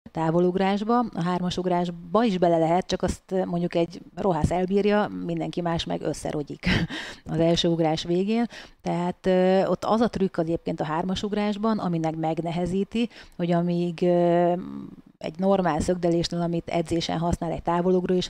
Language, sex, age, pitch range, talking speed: Hungarian, female, 30-49, 170-195 Hz, 135 wpm